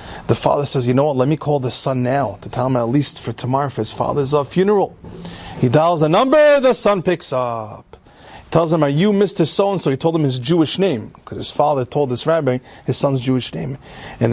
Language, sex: English, male